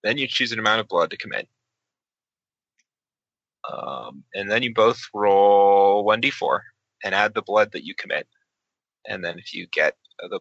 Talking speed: 165 wpm